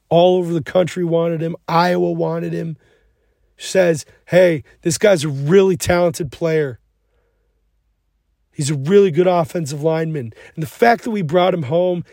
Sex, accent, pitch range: male, American, 150-180 Hz